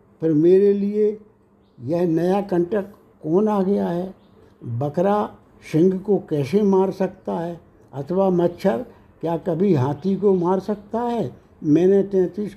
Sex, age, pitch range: male, 60-79, 155-195 Hz